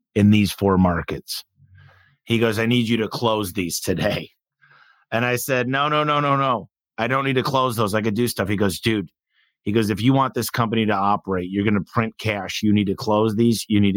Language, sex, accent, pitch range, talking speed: English, male, American, 100-120 Hz, 230 wpm